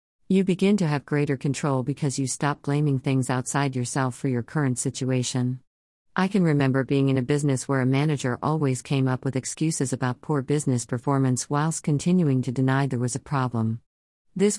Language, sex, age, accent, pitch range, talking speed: English, female, 50-69, American, 130-155 Hz, 185 wpm